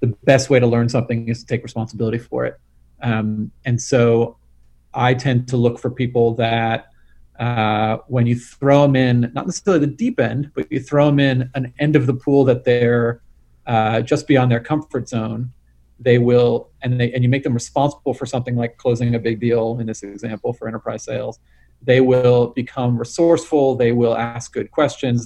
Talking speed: 190 wpm